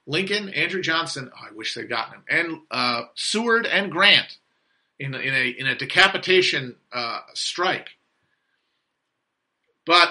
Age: 40-59